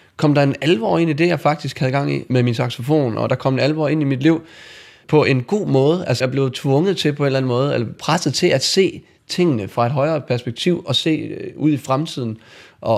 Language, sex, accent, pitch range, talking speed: Danish, male, native, 125-155 Hz, 250 wpm